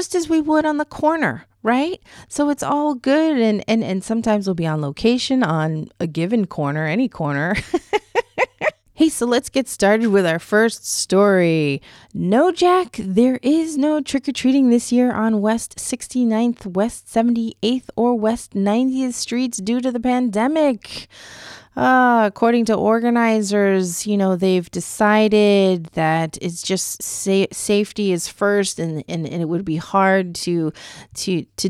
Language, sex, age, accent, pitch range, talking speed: English, female, 30-49, American, 170-235 Hz, 155 wpm